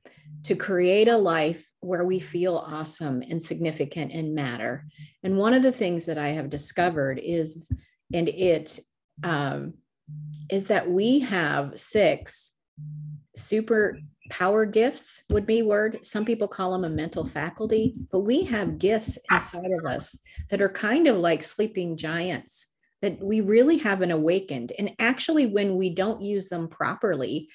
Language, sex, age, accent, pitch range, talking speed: English, female, 40-59, American, 155-200 Hz, 150 wpm